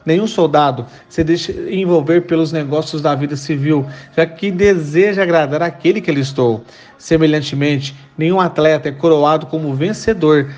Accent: Brazilian